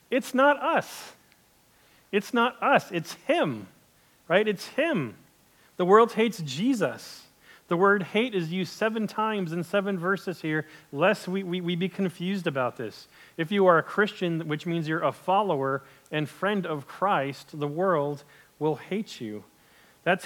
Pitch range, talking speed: 145-195 Hz, 160 wpm